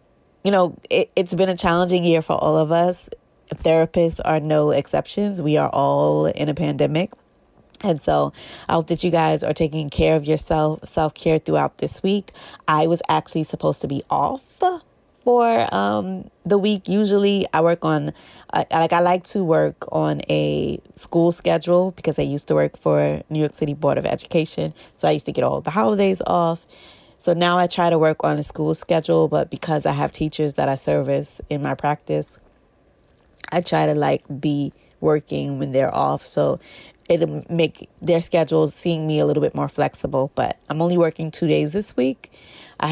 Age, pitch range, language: 20-39, 140-170 Hz, English